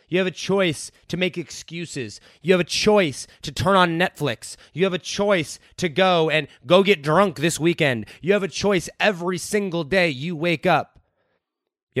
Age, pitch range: 30-49, 140-190 Hz